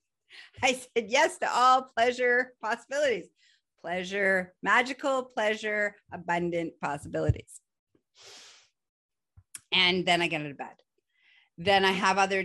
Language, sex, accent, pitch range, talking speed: English, female, American, 150-215 Hz, 110 wpm